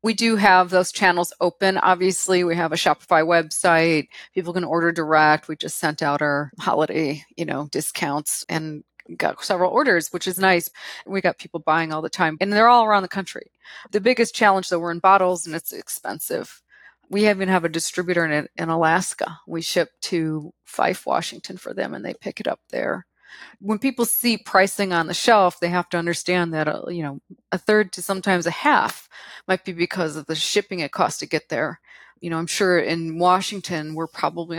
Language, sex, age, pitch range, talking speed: English, female, 30-49, 160-195 Hz, 200 wpm